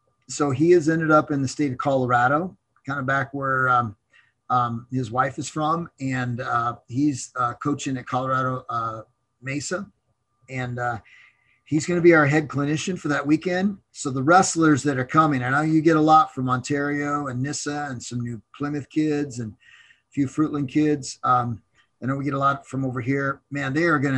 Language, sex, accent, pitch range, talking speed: English, male, American, 125-155 Hz, 200 wpm